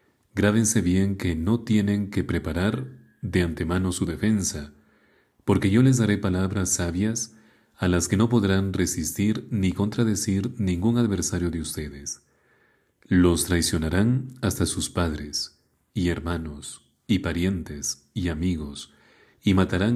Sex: male